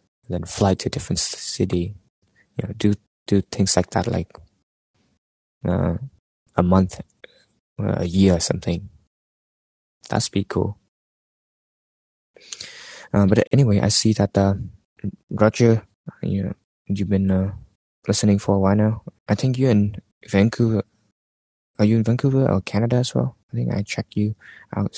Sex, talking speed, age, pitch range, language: male, 150 wpm, 20-39, 95-110 Hz, English